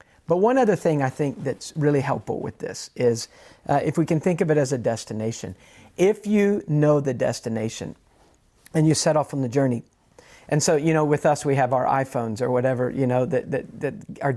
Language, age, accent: English, 50-69, American